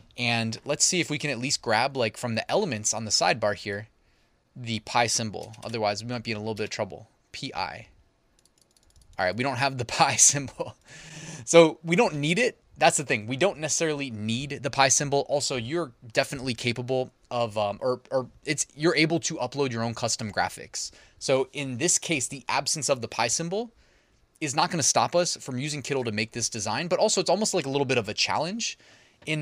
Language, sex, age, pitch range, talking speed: English, male, 20-39, 110-145 Hz, 220 wpm